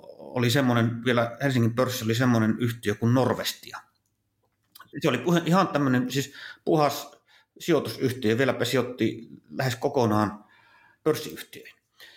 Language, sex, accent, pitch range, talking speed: Finnish, male, native, 115-155 Hz, 110 wpm